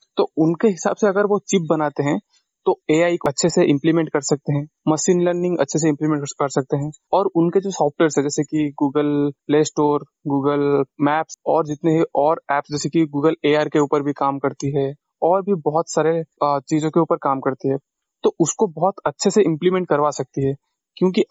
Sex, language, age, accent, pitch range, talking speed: male, Hindi, 20-39, native, 150-180 Hz, 205 wpm